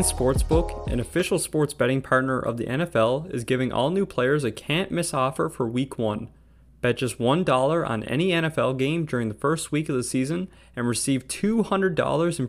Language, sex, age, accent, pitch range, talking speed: English, male, 20-39, American, 115-150 Hz, 185 wpm